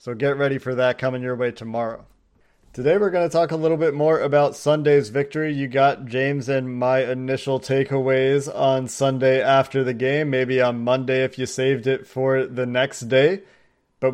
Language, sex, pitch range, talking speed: English, male, 125-140 Hz, 190 wpm